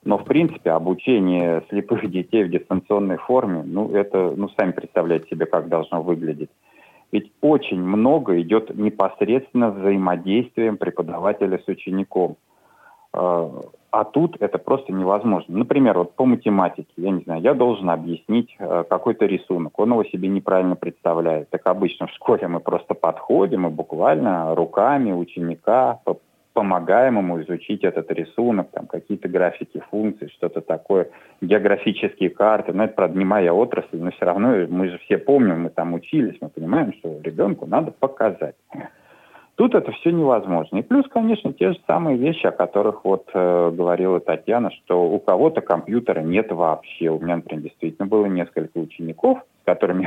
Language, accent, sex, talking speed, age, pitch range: Russian, native, male, 150 wpm, 30-49, 85-105 Hz